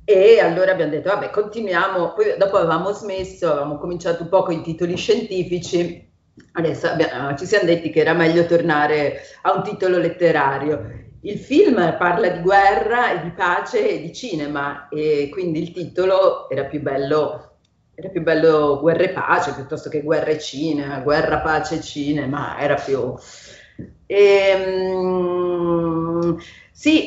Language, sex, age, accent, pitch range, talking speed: Italian, female, 40-59, native, 155-195 Hz, 140 wpm